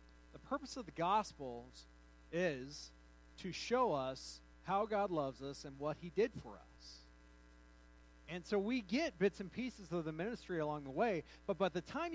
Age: 40-59